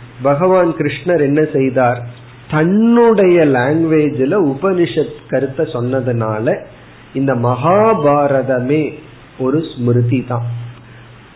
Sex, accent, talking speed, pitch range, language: male, native, 75 wpm, 120-155 Hz, Tamil